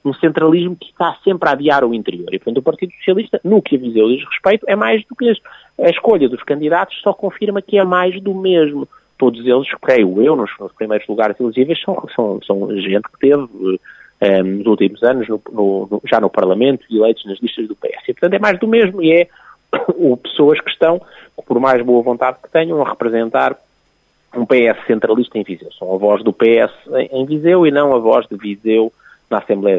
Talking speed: 215 wpm